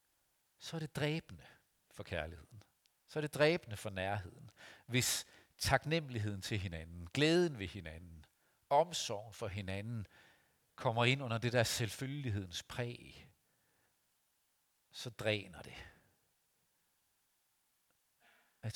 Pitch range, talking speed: 105-145 Hz, 105 wpm